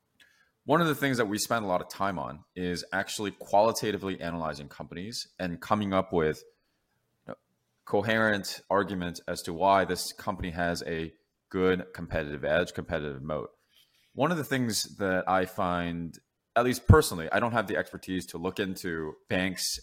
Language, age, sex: English, 20-39, male